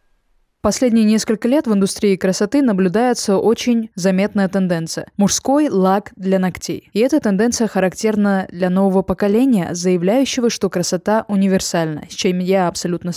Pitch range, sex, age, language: 180-210 Hz, female, 20-39, Russian